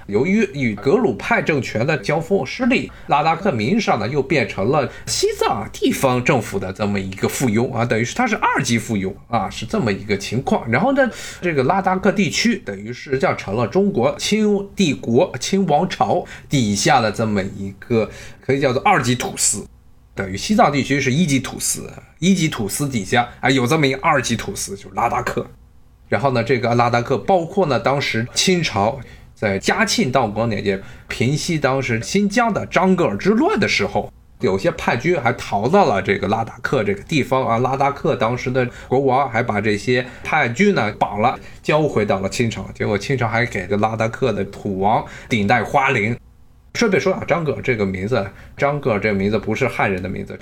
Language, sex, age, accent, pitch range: Chinese, male, 20-39, native, 110-180 Hz